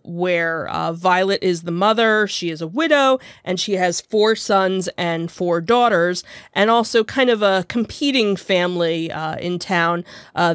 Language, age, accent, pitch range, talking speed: English, 30-49, American, 175-210 Hz, 165 wpm